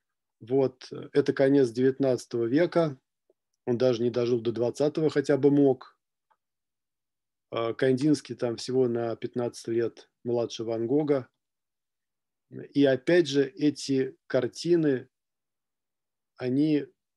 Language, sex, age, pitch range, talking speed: Russian, male, 40-59, 120-140 Hz, 100 wpm